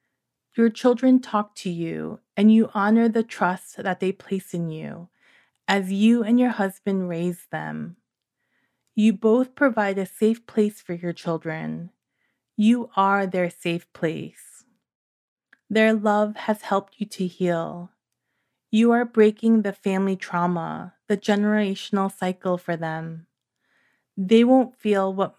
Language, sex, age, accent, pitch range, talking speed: English, female, 30-49, American, 180-225 Hz, 135 wpm